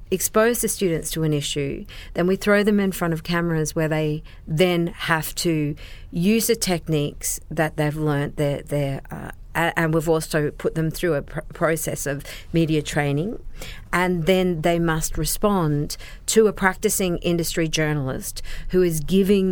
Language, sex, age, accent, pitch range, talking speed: English, female, 50-69, Australian, 150-180 Hz, 165 wpm